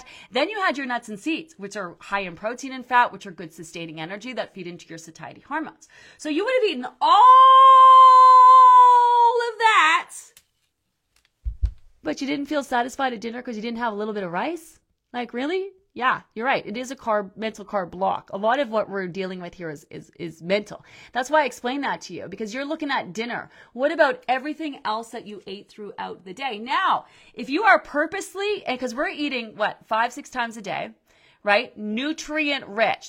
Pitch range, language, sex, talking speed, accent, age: 195-280 Hz, English, female, 200 wpm, American, 30-49